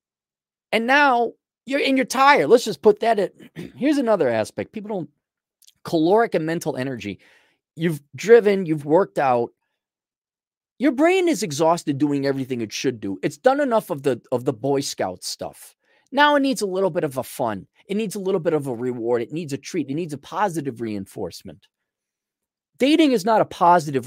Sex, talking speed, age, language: male, 185 wpm, 30-49, English